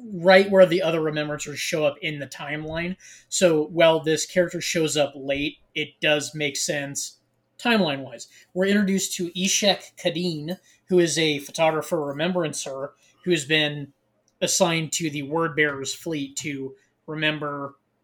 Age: 20-39